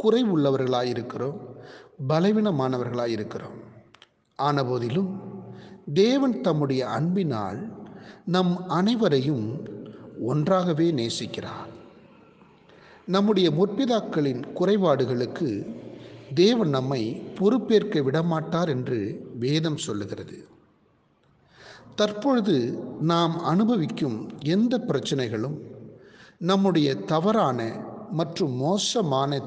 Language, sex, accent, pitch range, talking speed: Tamil, male, native, 130-200 Hz, 60 wpm